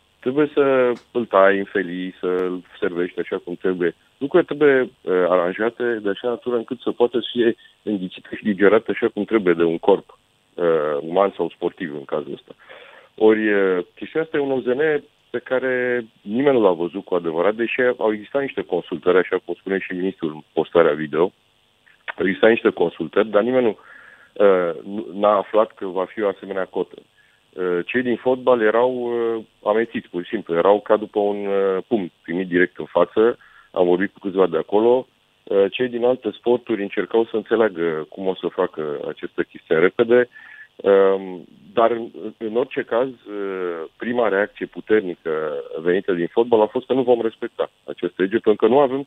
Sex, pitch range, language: male, 95-125 Hz, Romanian